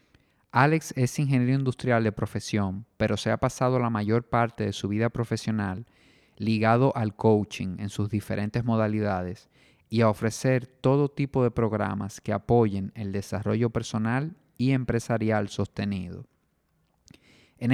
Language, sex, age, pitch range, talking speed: Spanish, male, 30-49, 105-125 Hz, 135 wpm